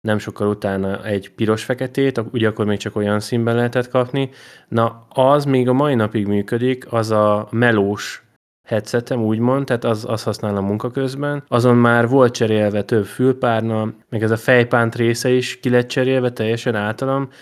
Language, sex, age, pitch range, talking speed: Hungarian, male, 20-39, 105-125 Hz, 160 wpm